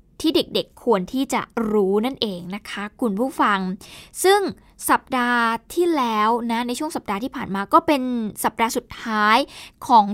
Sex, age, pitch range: female, 20-39, 220-275 Hz